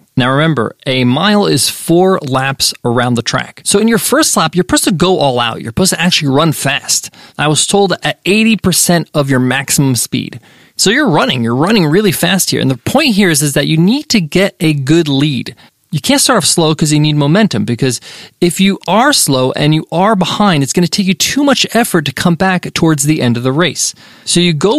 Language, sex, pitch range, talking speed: English, male, 145-205 Hz, 230 wpm